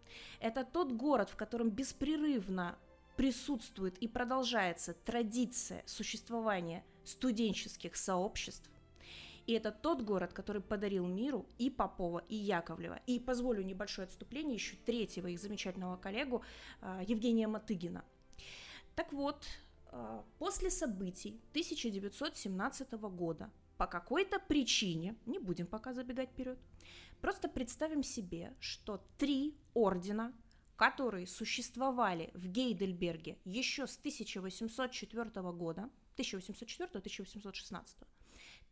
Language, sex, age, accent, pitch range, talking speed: Russian, female, 20-39, native, 195-260 Hz, 100 wpm